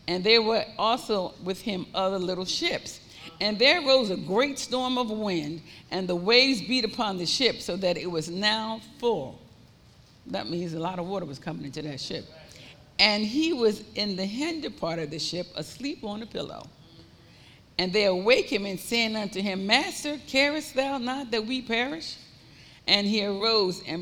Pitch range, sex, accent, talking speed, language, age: 180-250 Hz, female, American, 185 wpm, English, 50-69